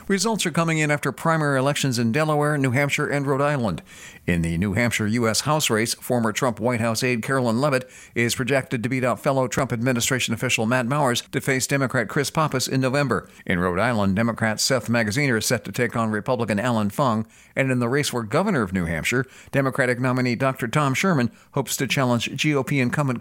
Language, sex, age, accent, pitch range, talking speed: English, male, 50-69, American, 110-145 Hz, 205 wpm